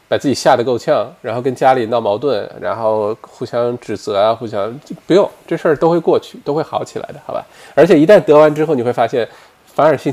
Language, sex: Chinese, male